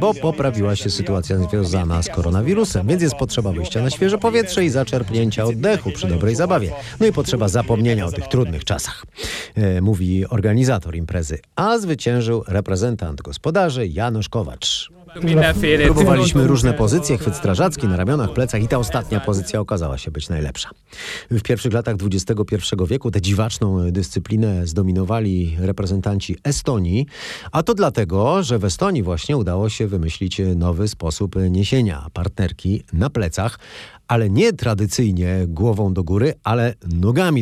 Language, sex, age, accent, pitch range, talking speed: Polish, male, 40-59, native, 90-120 Hz, 140 wpm